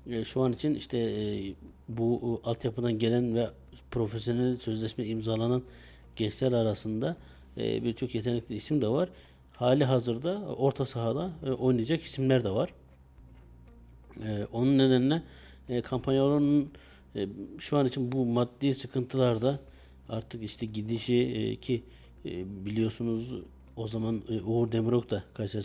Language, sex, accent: Turkish, male, native